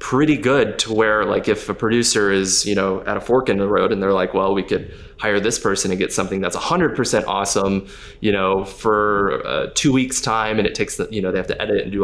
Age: 20-39